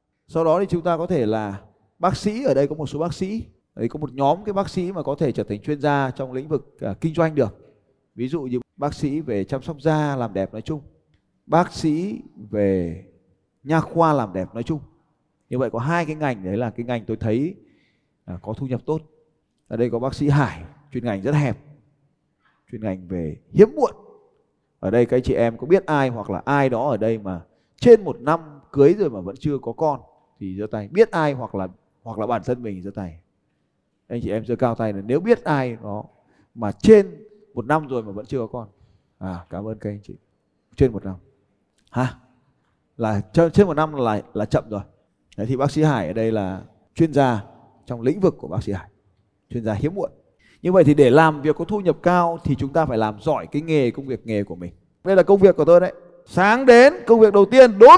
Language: Vietnamese